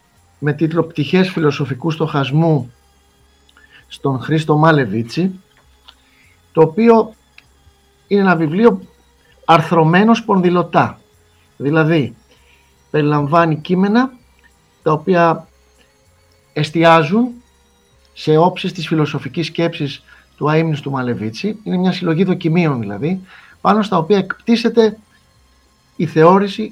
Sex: male